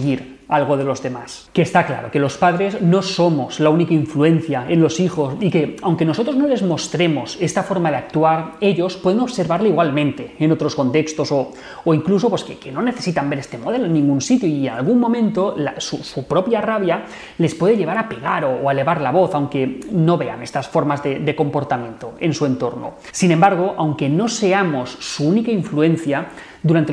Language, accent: Spanish, Spanish